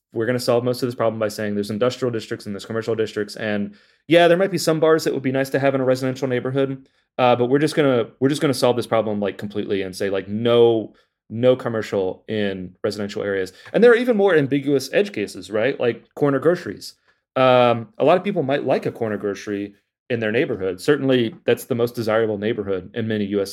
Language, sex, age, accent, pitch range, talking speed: English, male, 30-49, American, 110-135 Hz, 235 wpm